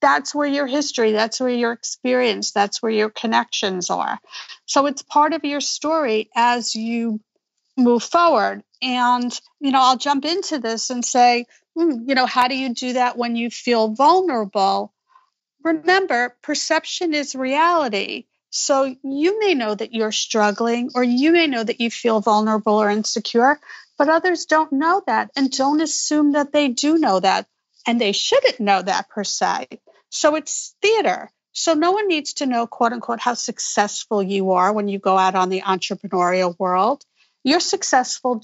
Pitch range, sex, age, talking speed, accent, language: 225-300 Hz, female, 40-59, 170 wpm, American, English